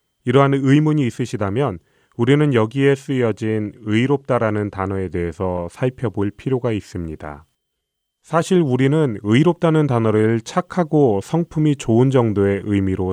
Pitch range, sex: 105-145 Hz, male